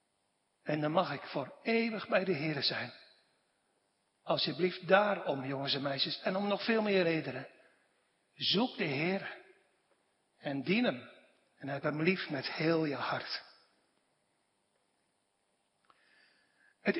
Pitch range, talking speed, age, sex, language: 160-220 Hz, 125 wpm, 60-79, male, Dutch